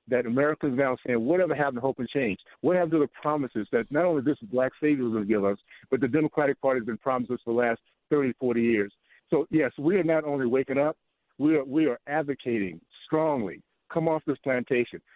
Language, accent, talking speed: English, American, 235 wpm